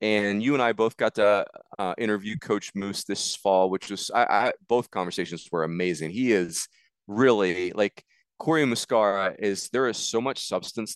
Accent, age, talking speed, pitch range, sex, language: American, 30-49, 180 wpm, 100-130 Hz, male, English